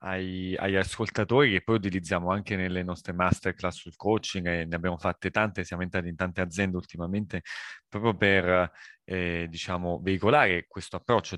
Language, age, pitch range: Italian, 30-49, 90-105 Hz